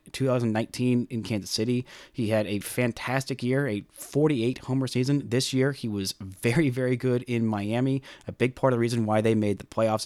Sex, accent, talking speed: male, American, 195 wpm